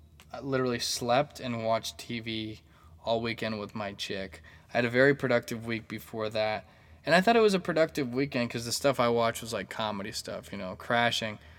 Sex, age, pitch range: male, 10-29, 100-120 Hz